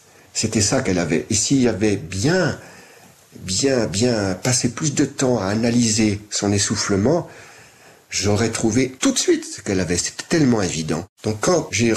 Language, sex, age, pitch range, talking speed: French, male, 50-69, 95-115 Hz, 165 wpm